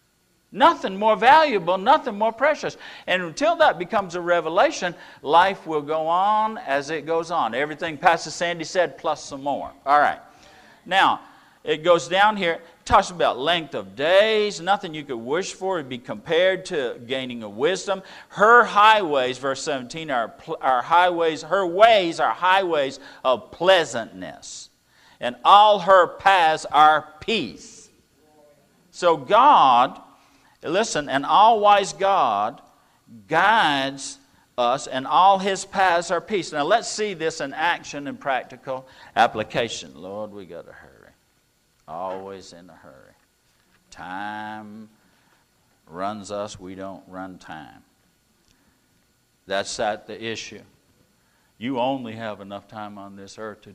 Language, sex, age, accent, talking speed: English, male, 50-69, American, 135 wpm